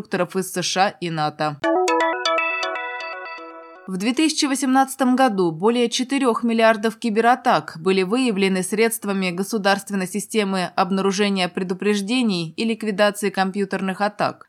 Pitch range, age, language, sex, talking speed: 175-220 Hz, 20-39, Russian, female, 90 wpm